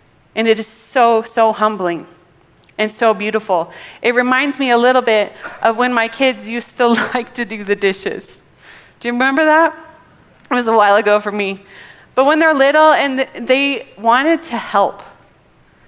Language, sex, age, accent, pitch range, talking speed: English, female, 30-49, American, 225-275 Hz, 175 wpm